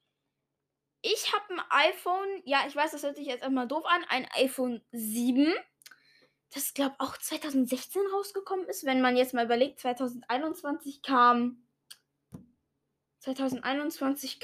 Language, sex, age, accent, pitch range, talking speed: German, female, 20-39, German, 255-325 Hz, 135 wpm